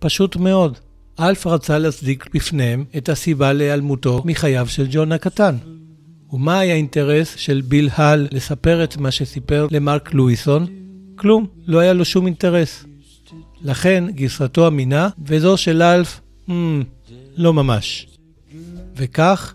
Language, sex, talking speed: Hebrew, male, 130 wpm